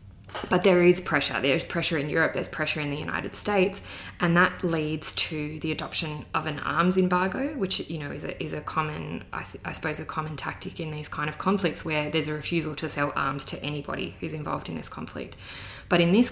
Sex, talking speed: female, 225 wpm